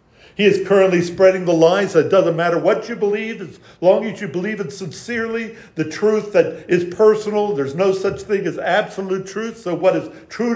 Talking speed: 205 wpm